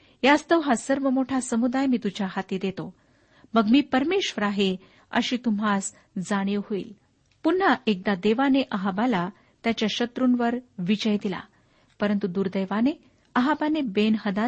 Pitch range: 195-260 Hz